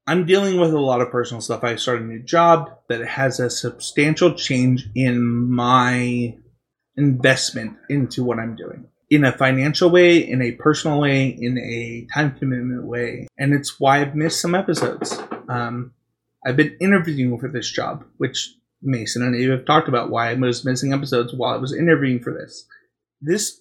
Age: 30-49